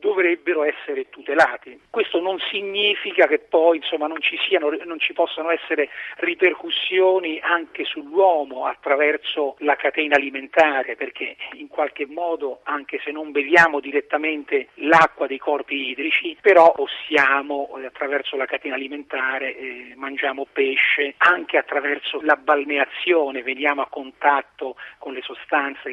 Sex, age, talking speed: male, 40-59, 125 wpm